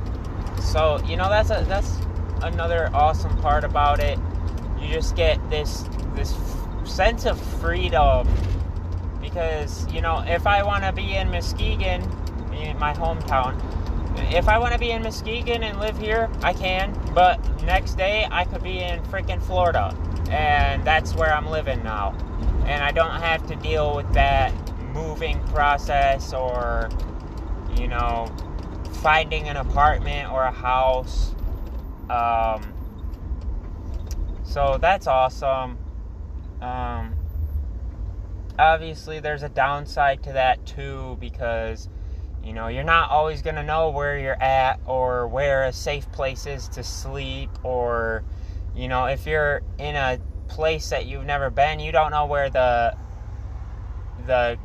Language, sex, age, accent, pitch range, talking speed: English, male, 20-39, American, 80-120 Hz, 140 wpm